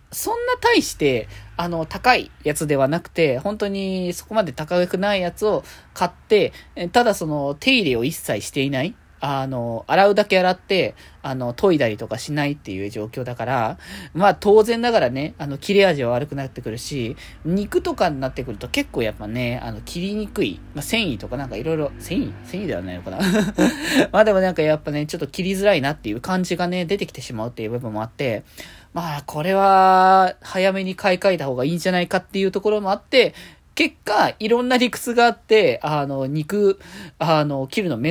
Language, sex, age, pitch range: Japanese, male, 20-39, 130-195 Hz